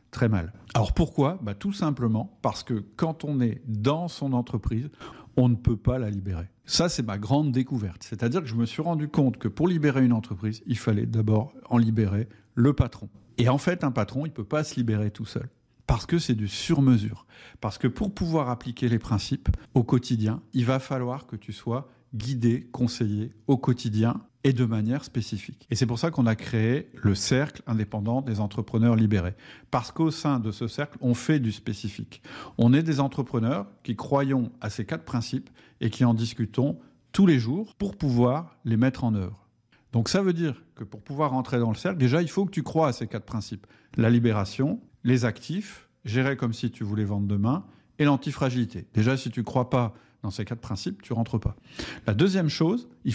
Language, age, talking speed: French, 50-69, 210 wpm